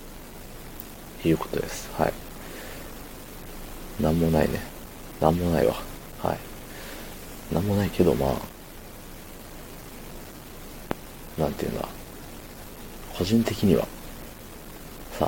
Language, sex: Japanese, male